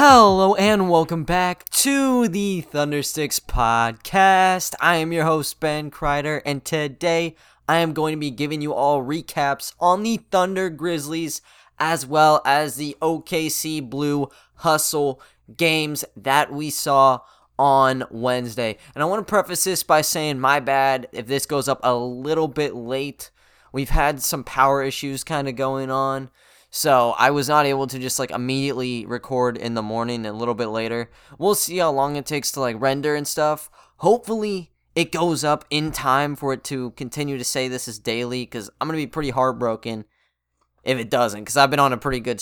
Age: 20-39